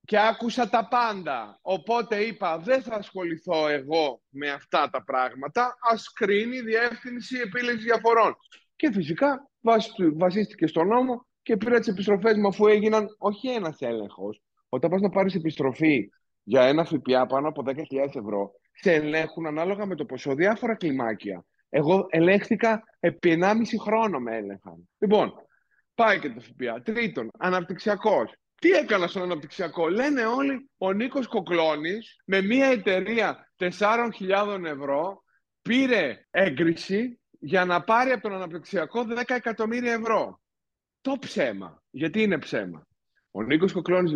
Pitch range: 155-225 Hz